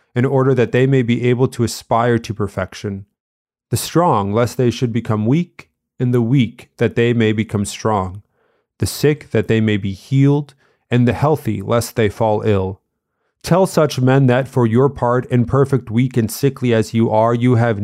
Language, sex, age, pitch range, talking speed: English, male, 30-49, 110-130 Hz, 190 wpm